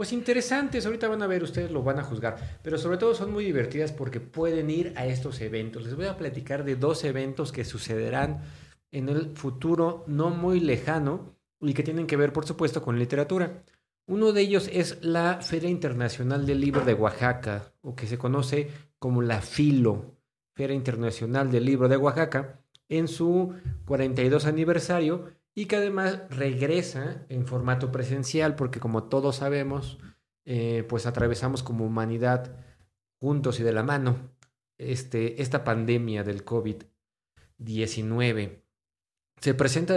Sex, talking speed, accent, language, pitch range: male, 155 wpm, Mexican, Spanish, 120-160 Hz